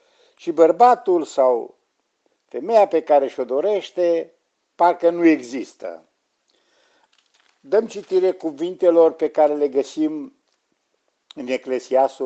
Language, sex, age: Romanian, male, 50-69